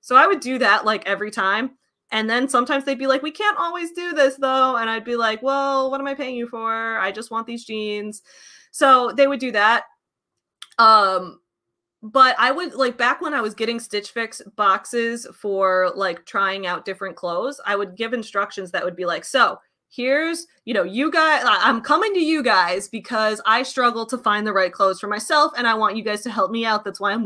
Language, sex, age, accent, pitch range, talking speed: English, female, 20-39, American, 205-265 Hz, 220 wpm